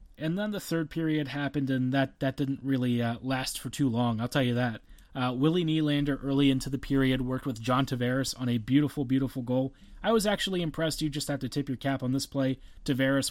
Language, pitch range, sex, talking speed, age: English, 130-145 Hz, male, 230 wpm, 30-49